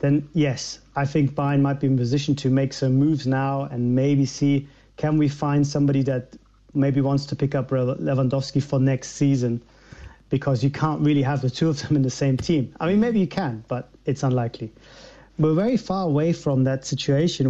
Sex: male